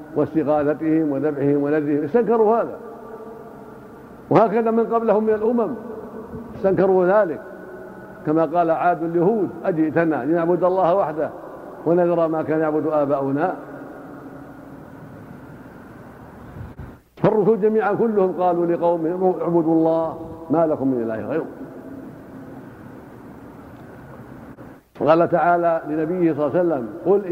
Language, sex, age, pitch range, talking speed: Arabic, male, 60-79, 150-185 Hz, 95 wpm